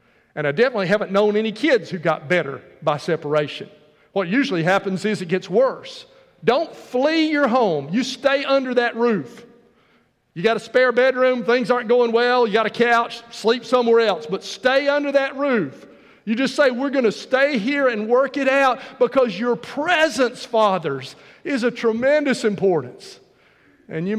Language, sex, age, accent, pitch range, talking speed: English, male, 50-69, American, 165-250 Hz, 175 wpm